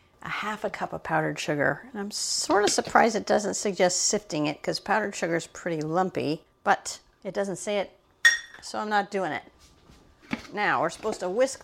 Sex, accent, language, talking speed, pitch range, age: female, American, English, 195 wpm, 180-210 Hz, 50-69